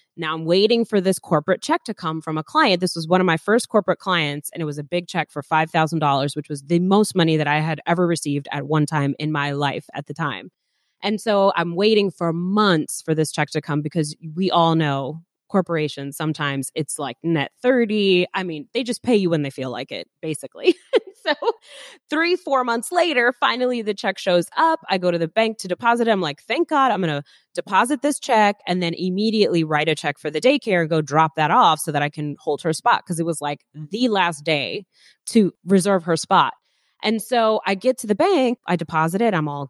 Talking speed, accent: 230 wpm, American